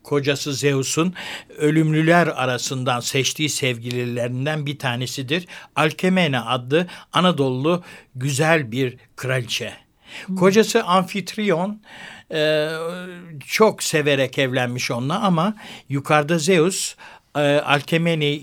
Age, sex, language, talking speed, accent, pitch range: 60-79, male, Turkish, 80 wpm, native, 130-180 Hz